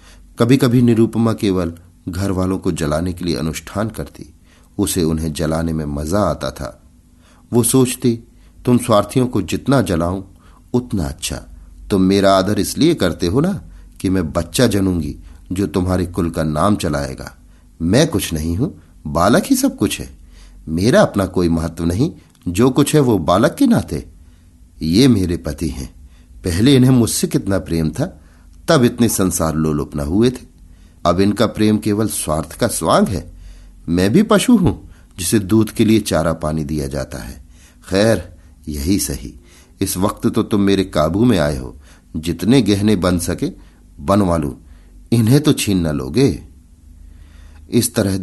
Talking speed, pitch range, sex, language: 165 wpm, 80-105 Hz, male, Hindi